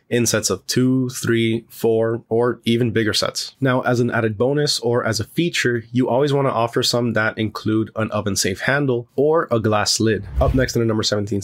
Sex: male